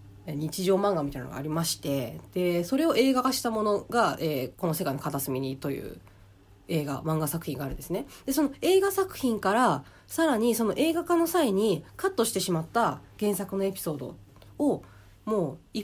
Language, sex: Japanese, female